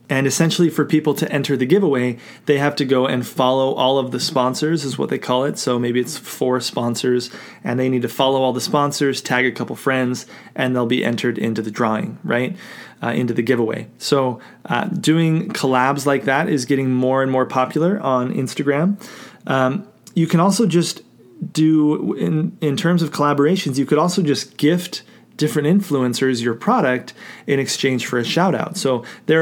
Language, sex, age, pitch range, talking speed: English, male, 30-49, 130-155 Hz, 190 wpm